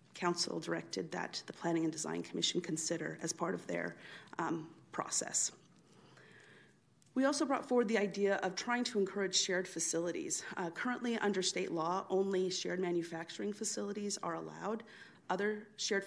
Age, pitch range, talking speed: 40-59, 170-205 Hz, 150 wpm